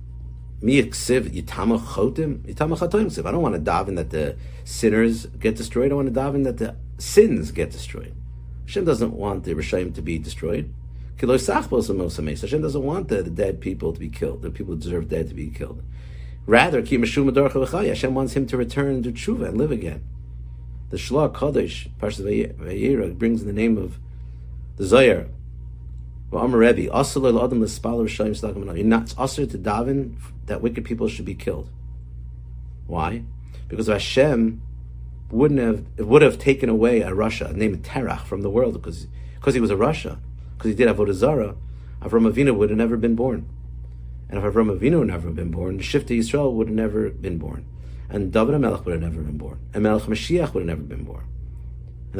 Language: English